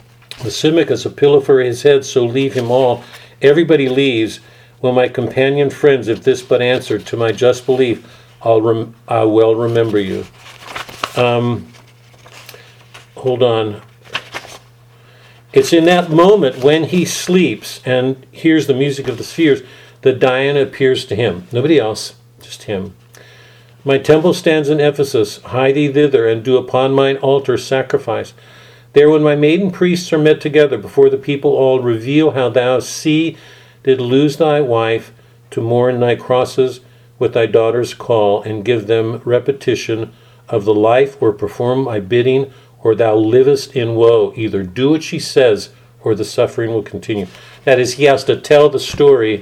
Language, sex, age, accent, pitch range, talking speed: English, male, 50-69, American, 120-145 Hz, 160 wpm